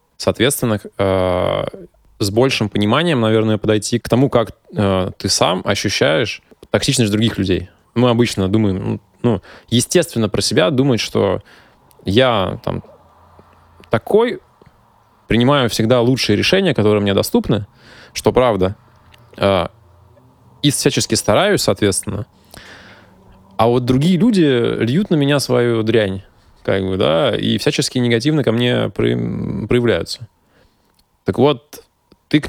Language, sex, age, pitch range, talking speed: Russian, male, 20-39, 100-125 Hz, 120 wpm